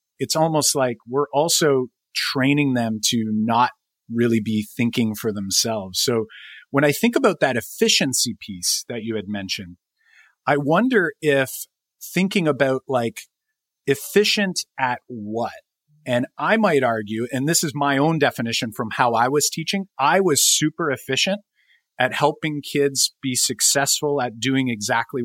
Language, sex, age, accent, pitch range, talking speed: English, male, 40-59, American, 115-150 Hz, 145 wpm